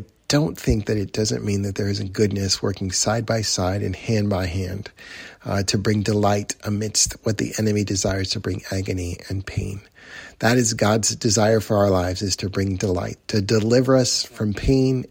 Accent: American